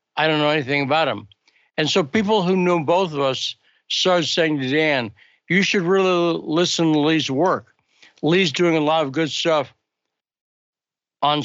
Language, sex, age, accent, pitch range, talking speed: English, male, 60-79, American, 140-180 Hz, 175 wpm